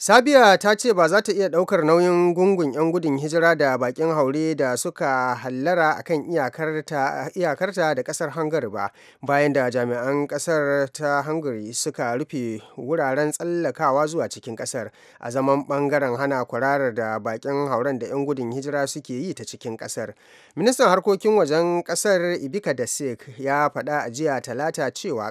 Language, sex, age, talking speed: English, male, 30-49, 150 wpm